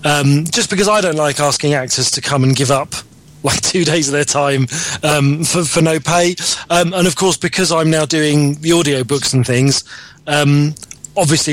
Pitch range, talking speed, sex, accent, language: 135-165 Hz, 205 wpm, male, British, English